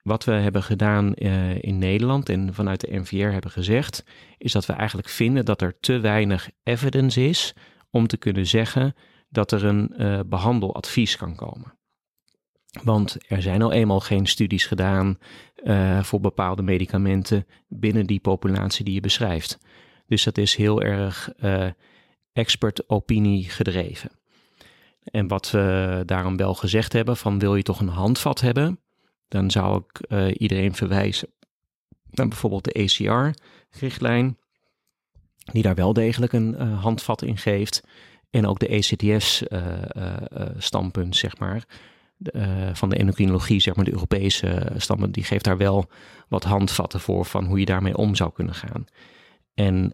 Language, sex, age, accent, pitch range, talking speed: Dutch, male, 30-49, Dutch, 95-115 Hz, 150 wpm